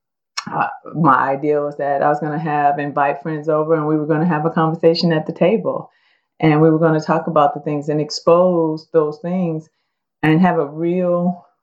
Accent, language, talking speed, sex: American, English, 210 wpm, female